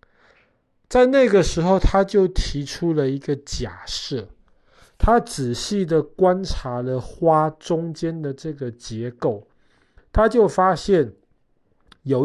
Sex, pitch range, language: male, 125-170 Hz, Chinese